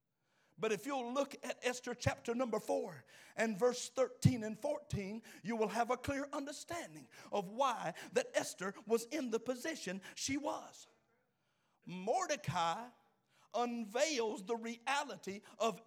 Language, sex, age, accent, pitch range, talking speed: English, male, 50-69, American, 180-255 Hz, 130 wpm